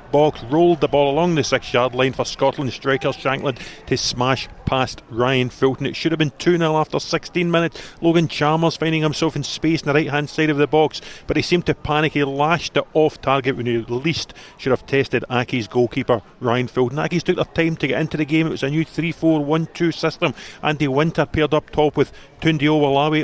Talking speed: 215 wpm